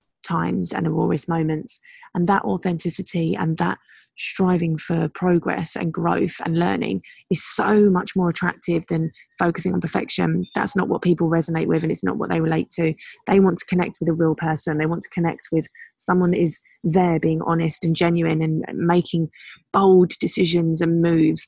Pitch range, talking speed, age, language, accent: 165-185 Hz, 180 wpm, 20-39, English, British